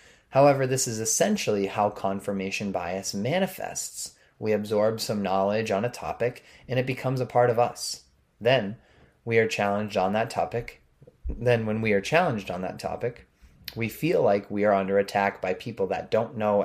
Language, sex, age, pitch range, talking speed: English, male, 20-39, 95-120 Hz, 175 wpm